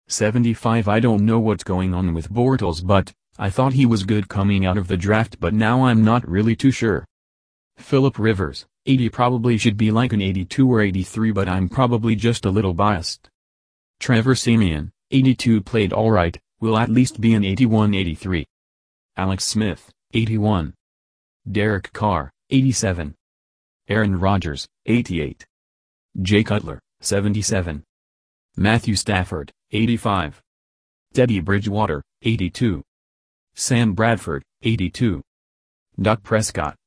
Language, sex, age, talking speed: English, male, 30-49, 130 wpm